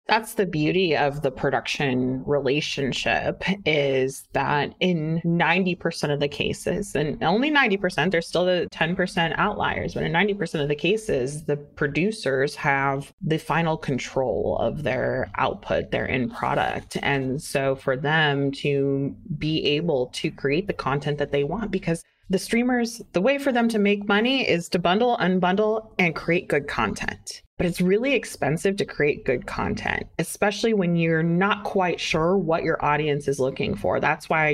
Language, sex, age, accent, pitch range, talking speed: English, female, 30-49, American, 145-190 Hz, 165 wpm